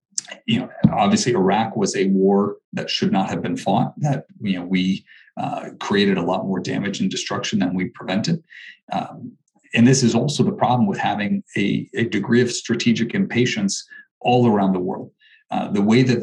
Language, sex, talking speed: English, male, 190 wpm